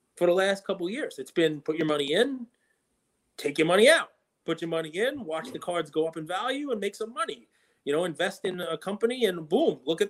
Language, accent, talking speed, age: English, American, 245 wpm, 30-49